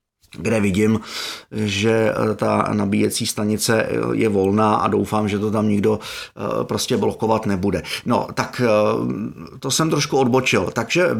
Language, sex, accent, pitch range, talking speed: Czech, male, native, 105-135 Hz, 130 wpm